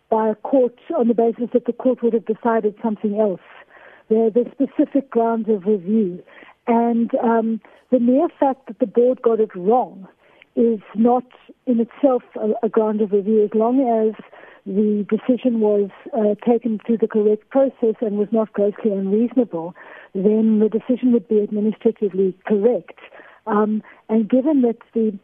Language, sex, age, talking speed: English, female, 60-79, 165 wpm